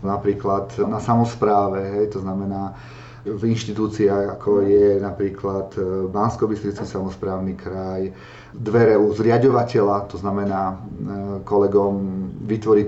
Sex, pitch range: male, 100-115 Hz